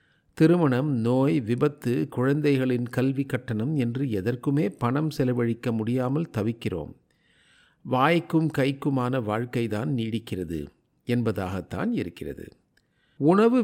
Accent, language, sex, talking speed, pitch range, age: native, Tamil, male, 90 wpm, 120-155 Hz, 50-69